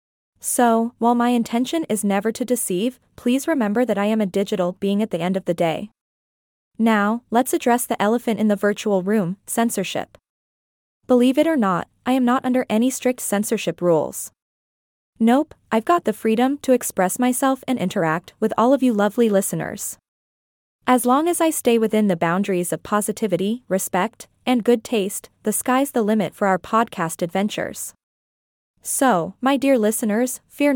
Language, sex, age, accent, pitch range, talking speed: English, female, 20-39, American, 195-245 Hz, 170 wpm